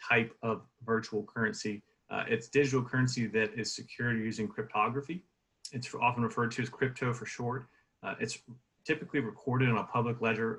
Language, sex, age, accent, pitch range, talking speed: English, male, 30-49, American, 110-130 Hz, 165 wpm